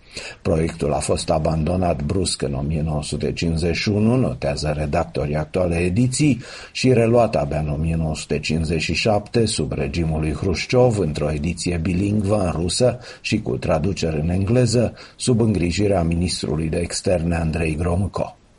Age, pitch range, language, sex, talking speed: 50-69, 80-105 Hz, Romanian, male, 120 wpm